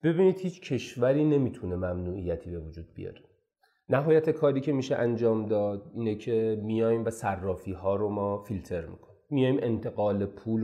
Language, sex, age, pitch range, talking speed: Persian, male, 30-49, 105-155 Hz, 150 wpm